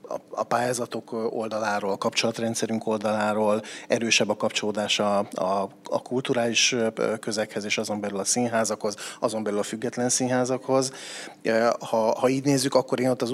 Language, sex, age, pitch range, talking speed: Hungarian, male, 30-49, 105-120 Hz, 135 wpm